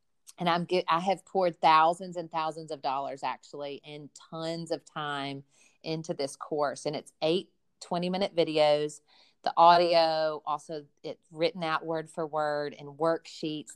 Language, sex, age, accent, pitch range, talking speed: English, female, 40-59, American, 150-180 Hz, 155 wpm